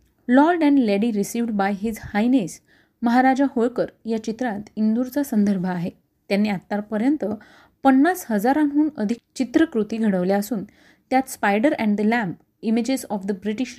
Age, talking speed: 30-49, 135 wpm